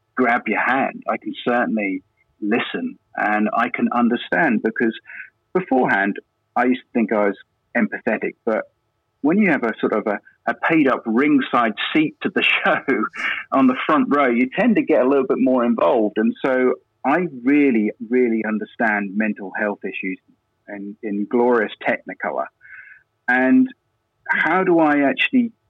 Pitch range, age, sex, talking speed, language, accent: 110-145 Hz, 40-59, male, 155 wpm, English, British